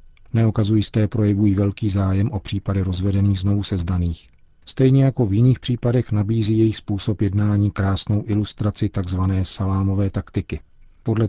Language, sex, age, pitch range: Czech, male, 40-59, 95-110 Hz